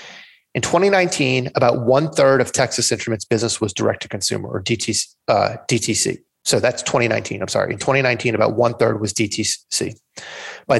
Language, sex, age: English, male, 30-49